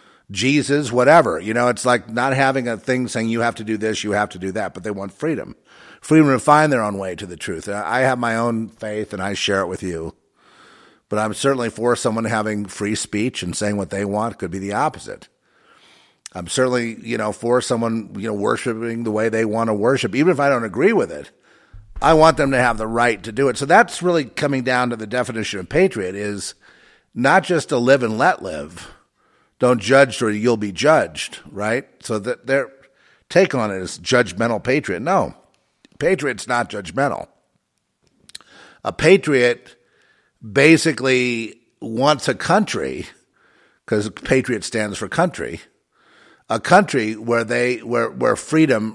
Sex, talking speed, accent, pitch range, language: male, 185 wpm, American, 110-145 Hz, English